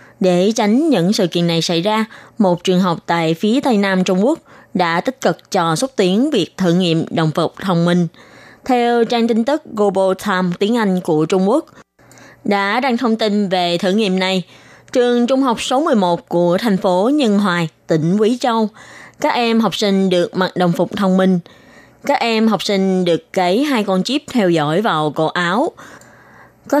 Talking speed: 195 wpm